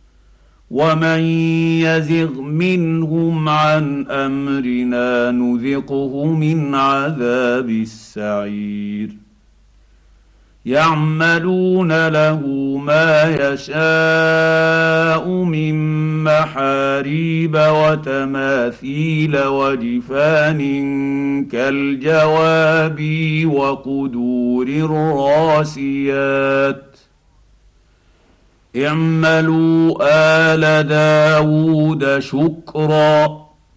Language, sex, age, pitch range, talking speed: Arabic, male, 50-69, 135-160 Hz, 45 wpm